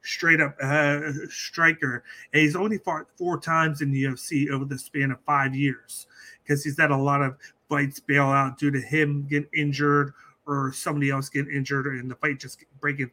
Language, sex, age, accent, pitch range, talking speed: English, male, 30-49, American, 135-150 Hz, 195 wpm